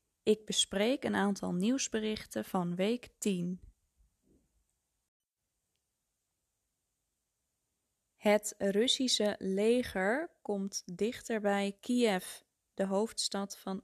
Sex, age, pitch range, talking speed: female, 20-39, 185-215 Hz, 80 wpm